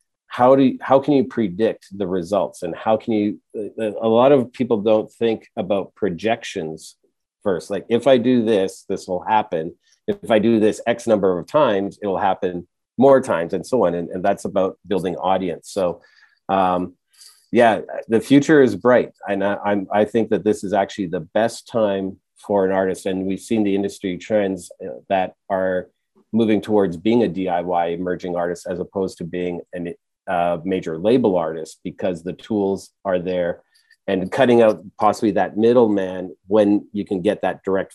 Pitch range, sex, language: 90-110 Hz, male, English